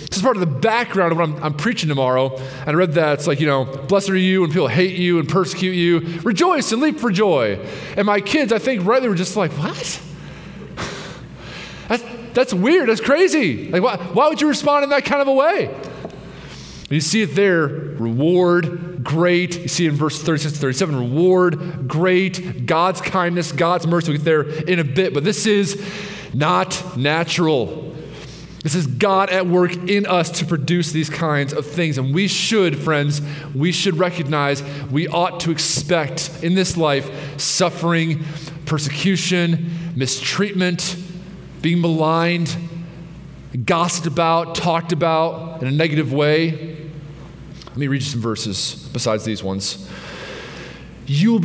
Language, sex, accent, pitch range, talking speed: English, male, American, 150-185 Hz, 170 wpm